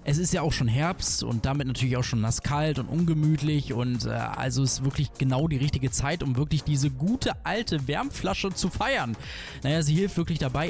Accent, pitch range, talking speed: German, 135-185 Hz, 200 wpm